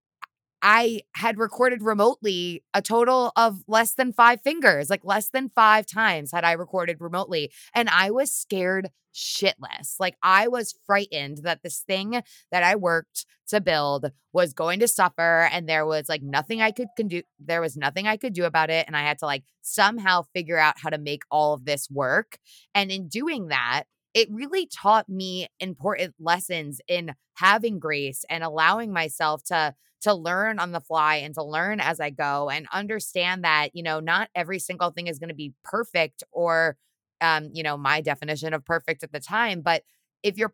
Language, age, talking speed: English, 20-39, 190 wpm